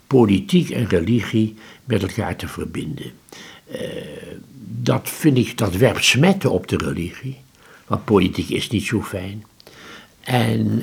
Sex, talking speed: male, 135 wpm